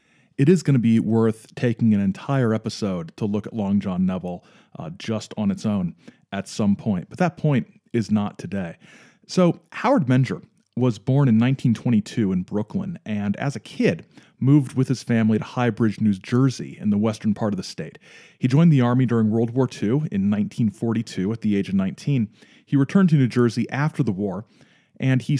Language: English